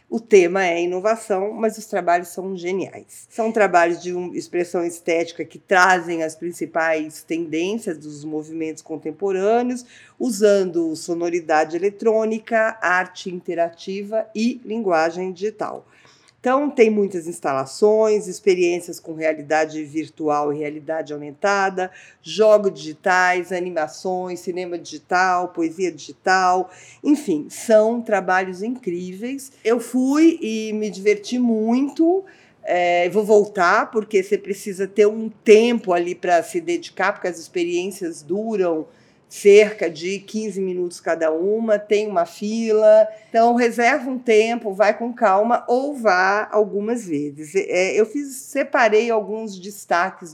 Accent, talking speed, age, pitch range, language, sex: Brazilian, 120 wpm, 50-69, 175-225 Hz, Portuguese, female